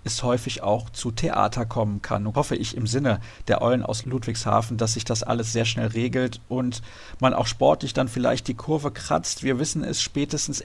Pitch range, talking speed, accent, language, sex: 115-140 Hz, 205 wpm, German, German, male